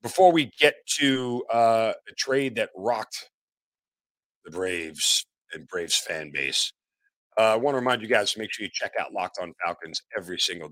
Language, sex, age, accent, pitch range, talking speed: English, male, 50-69, American, 110-170 Hz, 185 wpm